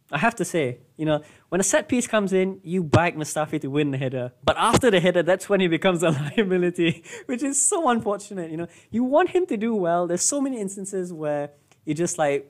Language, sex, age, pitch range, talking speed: English, male, 20-39, 130-170 Hz, 235 wpm